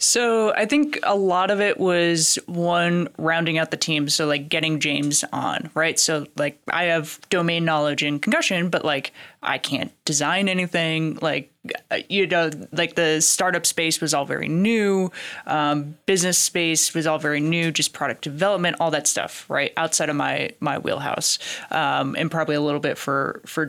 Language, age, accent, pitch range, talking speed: English, 20-39, American, 150-175 Hz, 180 wpm